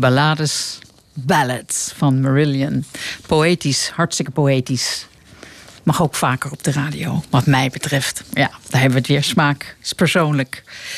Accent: Dutch